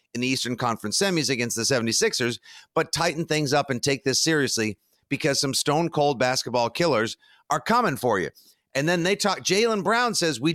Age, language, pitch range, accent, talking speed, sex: 50-69, English, 130-205 Hz, American, 190 wpm, male